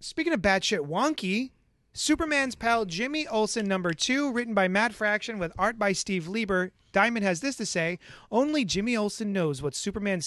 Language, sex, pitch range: English, male, 170-225 Hz